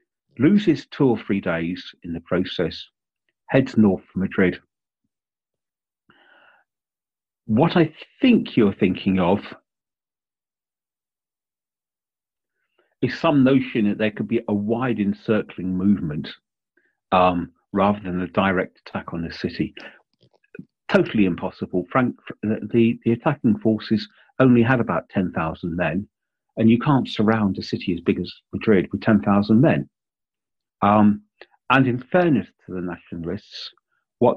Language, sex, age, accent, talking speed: English, male, 40-59, British, 125 wpm